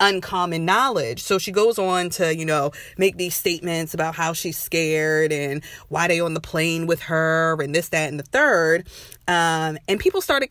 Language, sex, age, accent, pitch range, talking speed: English, female, 20-39, American, 150-185 Hz, 195 wpm